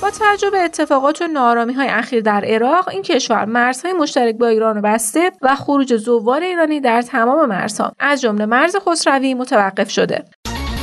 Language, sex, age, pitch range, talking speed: Persian, female, 30-49, 225-320 Hz, 165 wpm